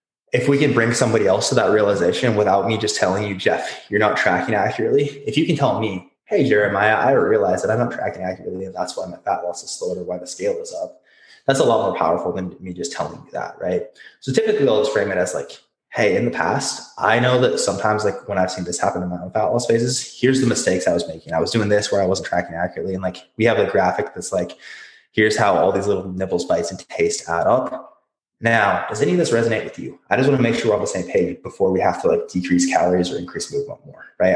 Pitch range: 95-140 Hz